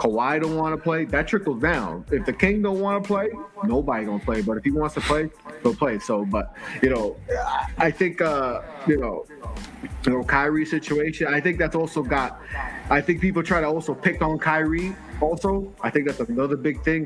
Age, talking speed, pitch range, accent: 20-39, 210 wpm, 125-160 Hz, American